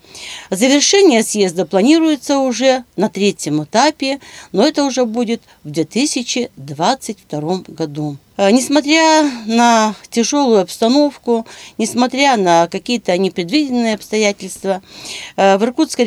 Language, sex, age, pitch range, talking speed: Russian, female, 40-59, 175-240 Hz, 95 wpm